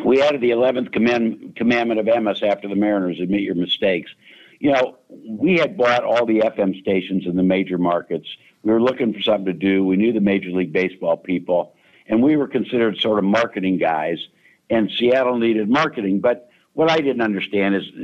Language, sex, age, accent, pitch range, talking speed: English, male, 60-79, American, 95-125 Hz, 195 wpm